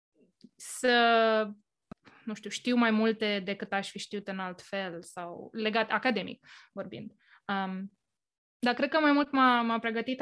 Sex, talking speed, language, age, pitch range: female, 140 wpm, Romanian, 20-39, 195-245 Hz